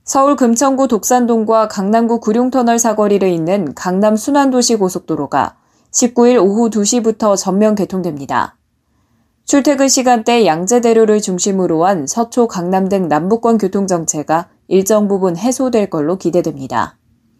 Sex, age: female, 20-39